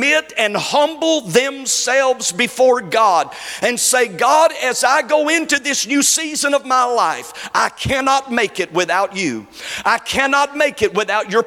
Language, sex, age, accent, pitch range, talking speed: English, male, 50-69, American, 215-290 Hz, 155 wpm